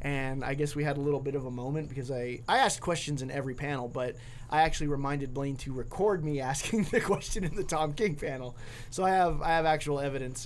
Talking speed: 240 wpm